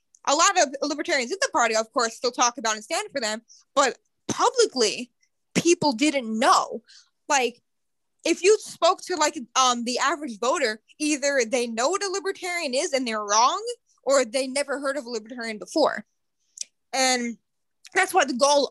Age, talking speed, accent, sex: 20-39, 175 wpm, American, female